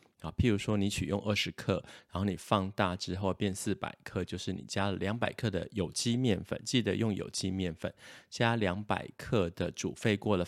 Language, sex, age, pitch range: Chinese, male, 30-49, 95-115 Hz